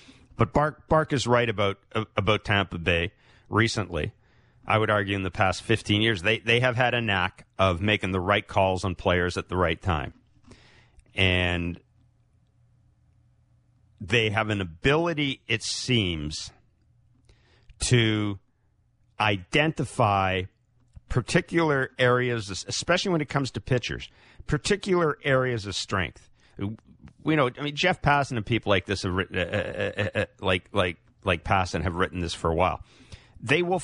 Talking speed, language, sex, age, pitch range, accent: 145 wpm, English, male, 50-69, 100-130 Hz, American